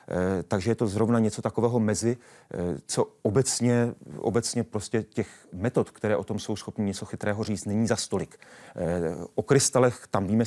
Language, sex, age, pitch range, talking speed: Czech, male, 30-49, 100-120 Hz, 160 wpm